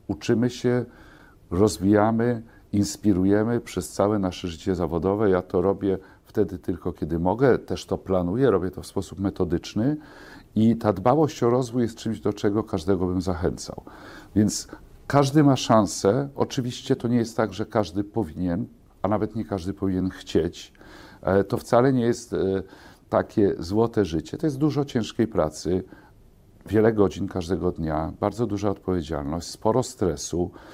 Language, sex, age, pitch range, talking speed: Polish, male, 50-69, 95-120 Hz, 145 wpm